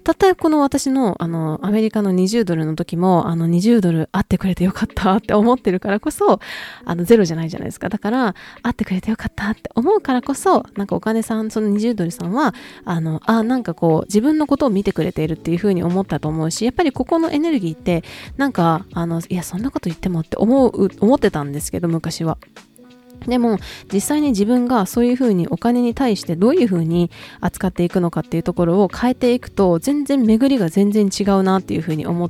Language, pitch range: Japanese, 170-250 Hz